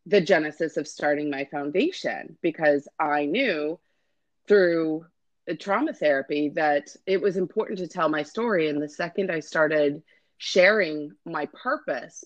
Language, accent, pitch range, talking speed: English, American, 150-195 Hz, 140 wpm